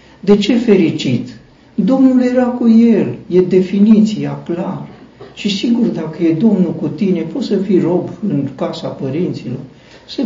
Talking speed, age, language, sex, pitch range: 145 wpm, 60-79, Romanian, male, 145-205 Hz